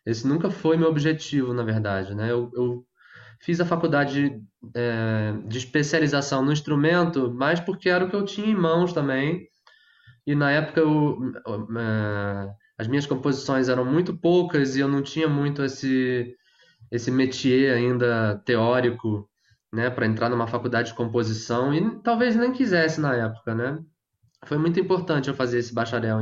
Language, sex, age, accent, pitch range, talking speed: Portuguese, male, 20-39, Brazilian, 115-155 Hz, 160 wpm